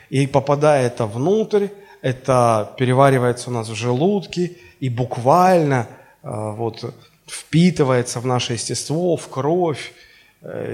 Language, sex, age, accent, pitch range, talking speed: Russian, male, 30-49, native, 125-160 Hz, 100 wpm